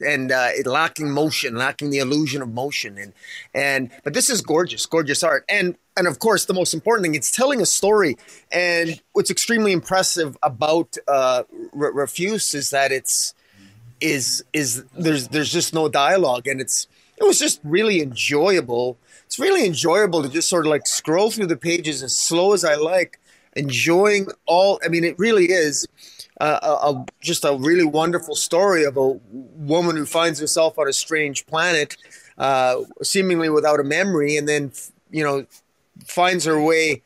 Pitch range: 140-175 Hz